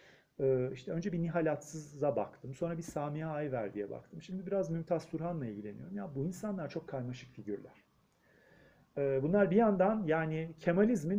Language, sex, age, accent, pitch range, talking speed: Turkish, male, 40-59, native, 135-175 Hz, 150 wpm